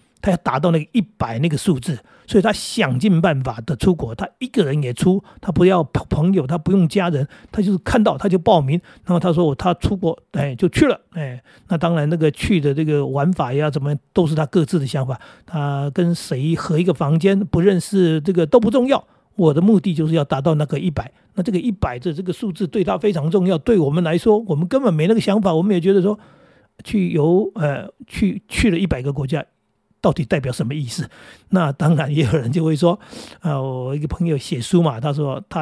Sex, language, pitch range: male, Chinese, 150-190 Hz